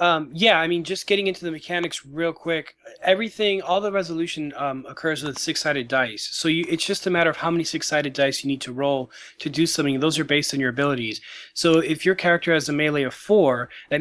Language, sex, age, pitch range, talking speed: English, male, 20-39, 140-165 Hz, 230 wpm